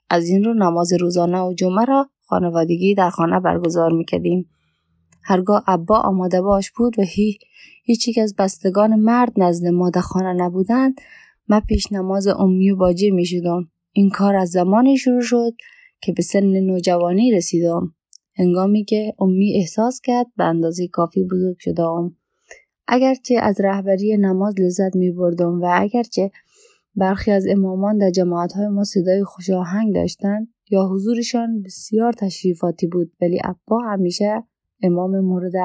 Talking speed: 145 wpm